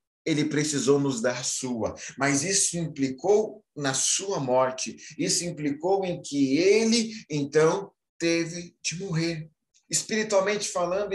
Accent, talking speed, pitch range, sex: Brazilian, 120 wpm, 125-190 Hz, male